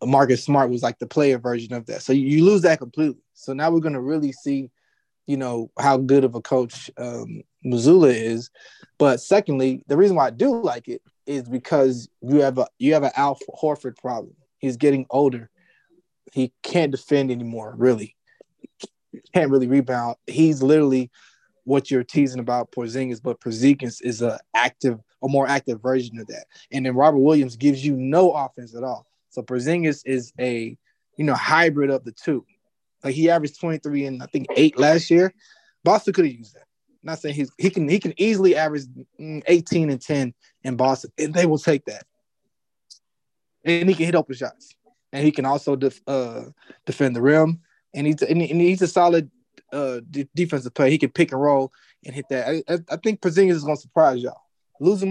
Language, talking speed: English, 195 wpm